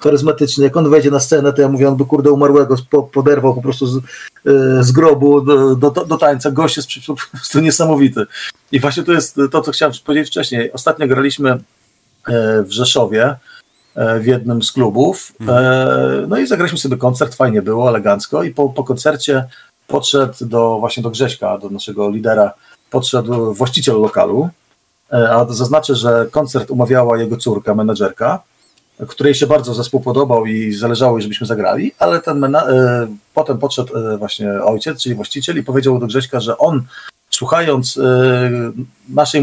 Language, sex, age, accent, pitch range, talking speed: Polish, male, 40-59, native, 125-150 Hz, 155 wpm